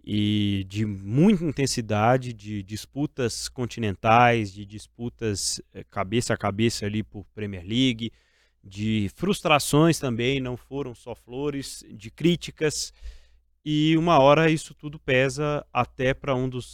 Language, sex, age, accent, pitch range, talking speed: Portuguese, male, 20-39, Brazilian, 105-140 Hz, 125 wpm